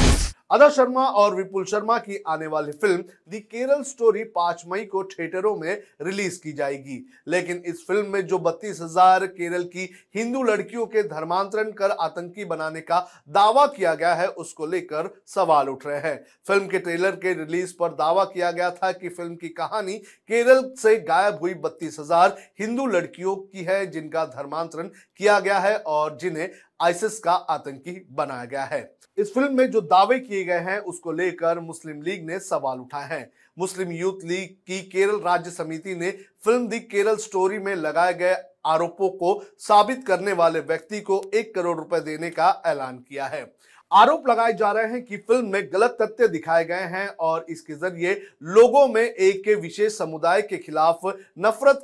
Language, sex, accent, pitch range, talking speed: Hindi, male, native, 170-215 Hz, 135 wpm